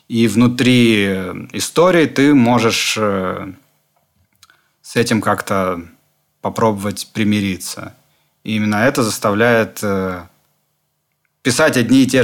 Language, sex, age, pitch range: Russian, male, 30-49, 110-140 Hz